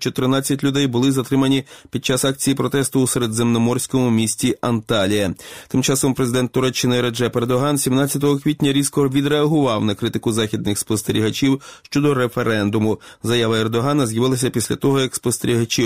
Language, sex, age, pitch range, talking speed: Ukrainian, male, 20-39, 115-140 Hz, 130 wpm